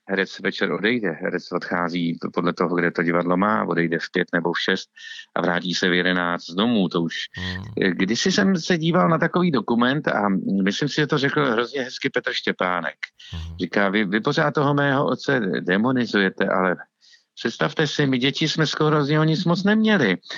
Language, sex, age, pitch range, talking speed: Czech, male, 50-69, 95-150 Hz, 180 wpm